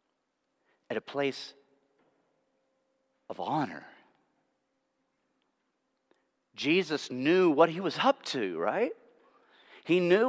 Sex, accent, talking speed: male, American, 85 wpm